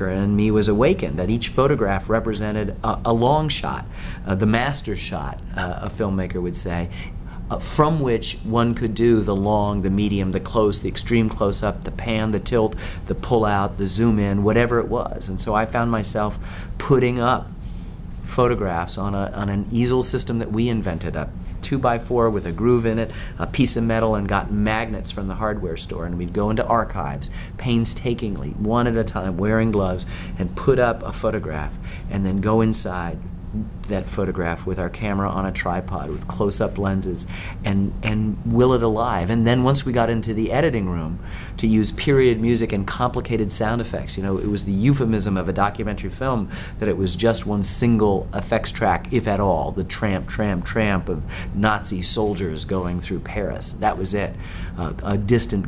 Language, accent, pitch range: English, American, 95-115 Hz